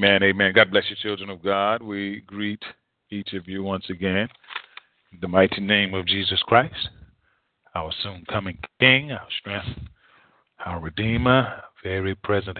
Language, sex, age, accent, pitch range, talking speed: English, male, 40-59, American, 95-110 Hz, 150 wpm